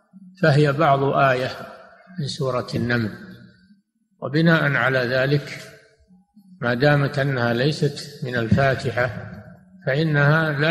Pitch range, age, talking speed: 125-155 Hz, 60-79, 95 wpm